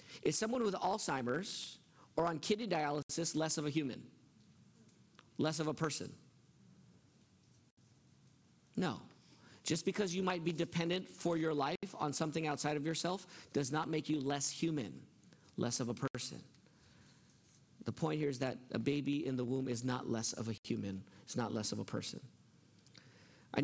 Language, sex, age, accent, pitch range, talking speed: English, male, 40-59, American, 130-165 Hz, 160 wpm